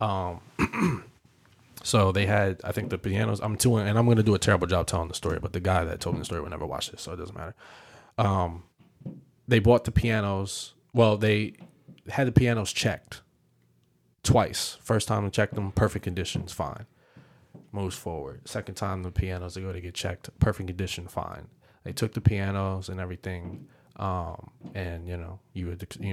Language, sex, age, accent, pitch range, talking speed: English, male, 20-39, American, 90-105 Hz, 195 wpm